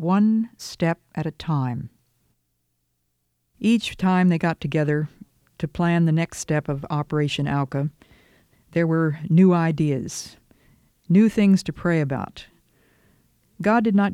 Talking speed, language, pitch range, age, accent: 125 wpm, English, 145-180 Hz, 50-69, American